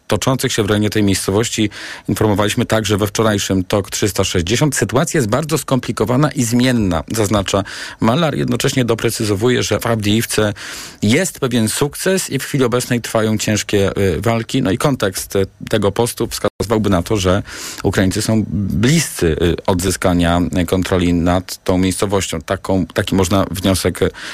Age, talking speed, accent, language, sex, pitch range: 40-59, 140 wpm, native, Polish, male, 100-120 Hz